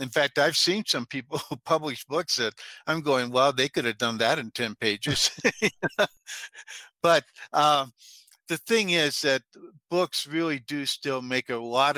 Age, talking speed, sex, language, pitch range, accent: 60-79, 170 wpm, male, English, 125-160 Hz, American